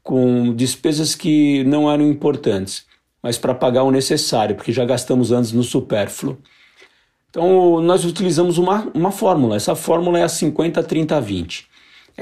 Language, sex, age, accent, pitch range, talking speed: Portuguese, male, 50-69, Brazilian, 120-155 Hz, 140 wpm